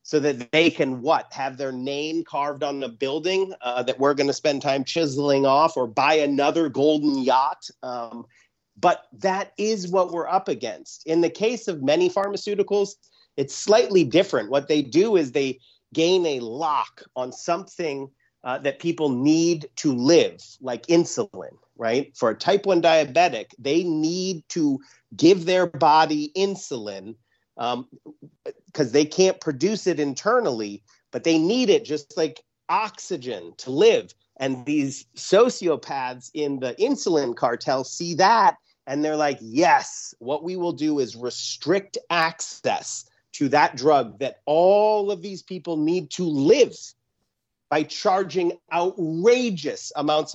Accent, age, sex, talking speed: American, 40-59, male, 150 wpm